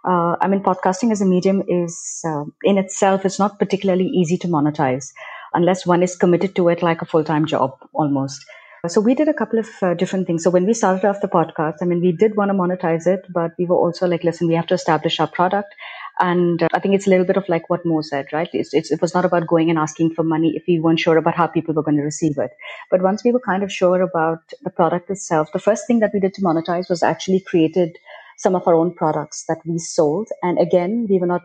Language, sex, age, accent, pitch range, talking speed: English, female, 30-49, Indian, 165-195 Hz, 255 wpm